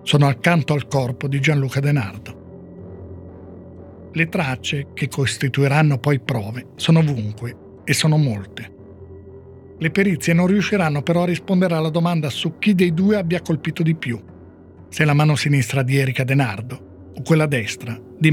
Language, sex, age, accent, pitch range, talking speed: Italian, male, 50-69, native, 120-165 Hz, 150 wpm